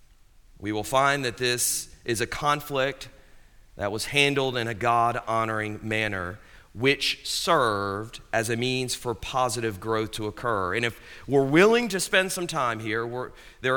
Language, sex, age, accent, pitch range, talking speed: English, male, 40-59, American, 110-160 Hz, 155 wpm